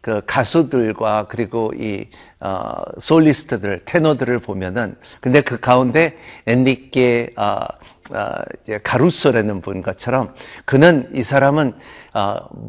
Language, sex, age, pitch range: Korean, male, 50-69, 120-160 Hz